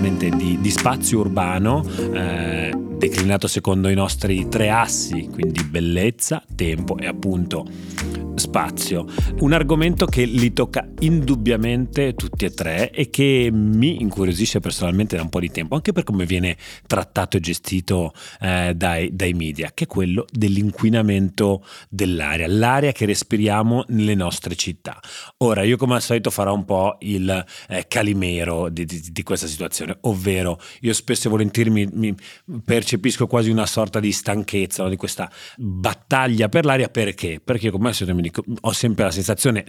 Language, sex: Italian, male